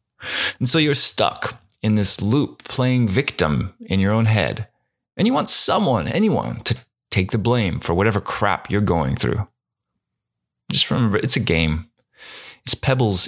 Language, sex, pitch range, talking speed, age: English, male, 100-130 Hz, 160 wpm, 30-49